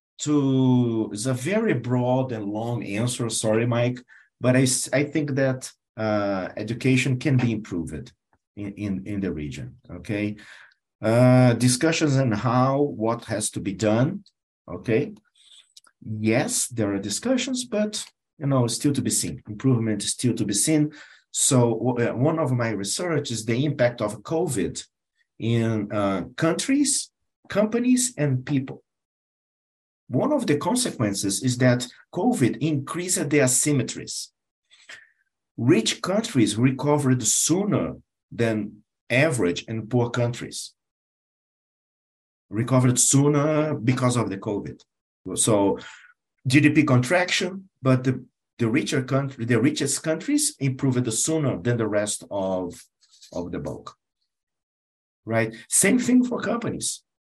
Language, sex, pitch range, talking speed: English, male, 110-145 Hz, 125 wpm